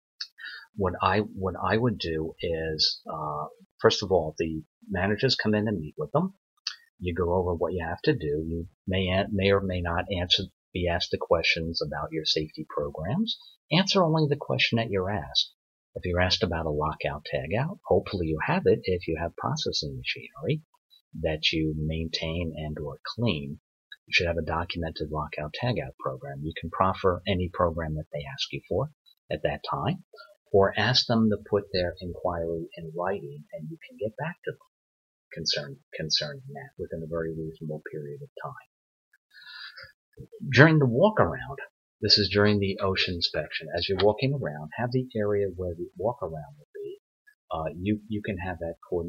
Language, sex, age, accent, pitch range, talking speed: English, male, 50-69, American, 80-105 Hz, 175 wpm